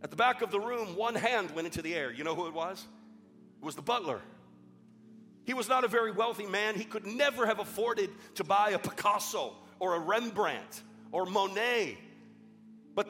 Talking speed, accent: 195 wpm, American